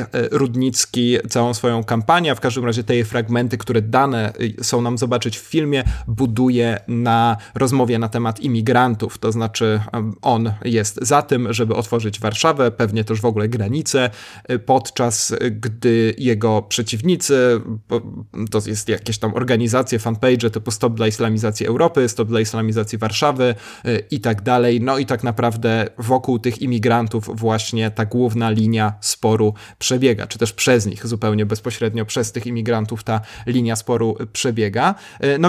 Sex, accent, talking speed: male, native, 145 wpm